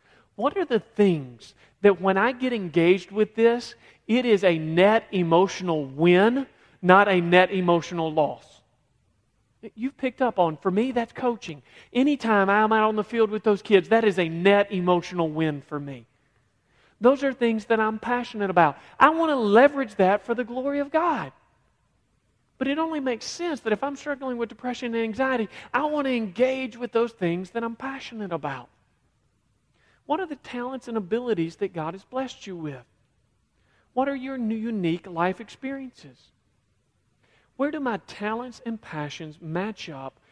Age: 40-59